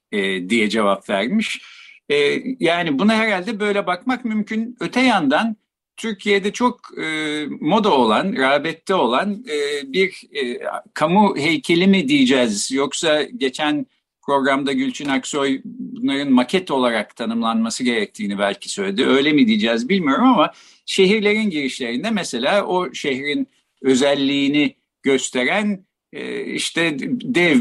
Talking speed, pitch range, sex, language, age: 105 wpm, 135-220 Hz, male, Turkish, 50-69